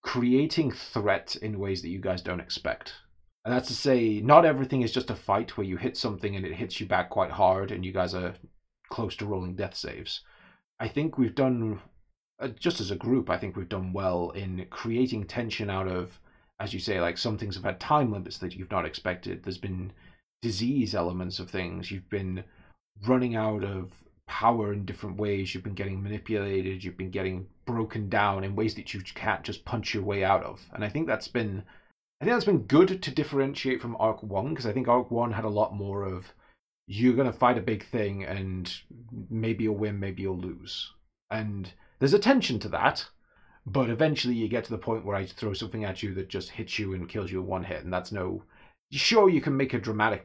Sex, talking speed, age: male, 215 wpm, 30-49